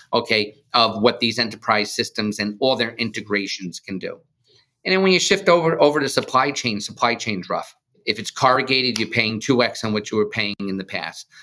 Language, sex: English, male